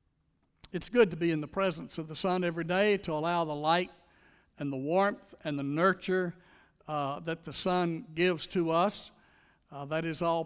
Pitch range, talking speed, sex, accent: 155-205 Hz, 190 wpm, male, American